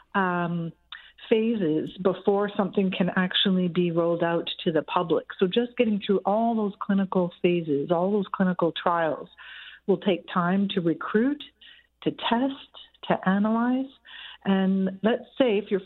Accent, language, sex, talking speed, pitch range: American, English, female, 145 wpm, 175-215 Hz